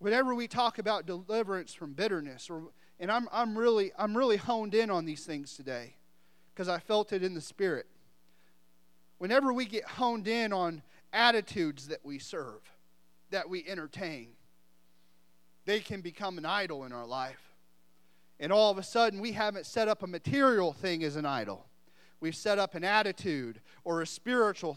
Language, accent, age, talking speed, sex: English, American, 40-59, 170 wpm, male